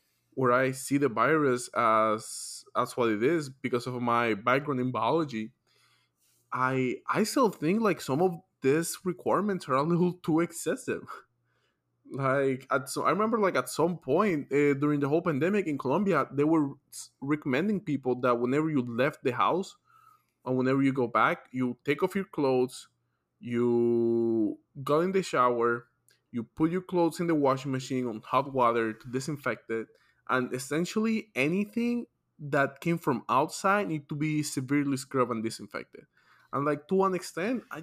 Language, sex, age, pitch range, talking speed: English, male, 20-39, 125-165 Hz, 165 wpm